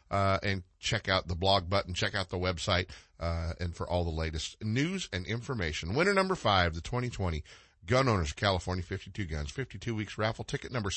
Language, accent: English, American